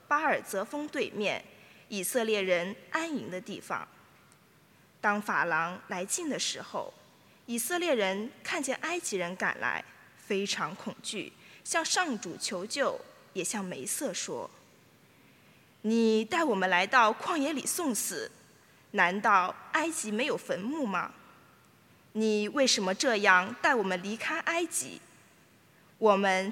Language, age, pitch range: English, 20-39, 195-300 Hz